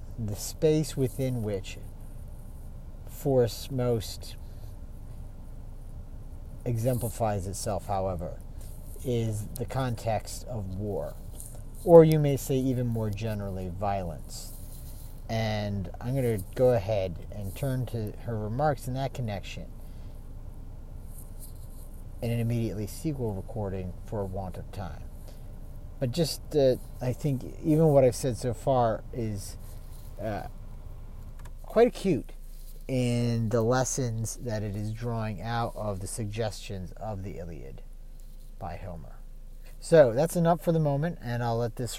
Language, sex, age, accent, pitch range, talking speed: English, male, 50-69, American, 100-125 Hz, 125 wpm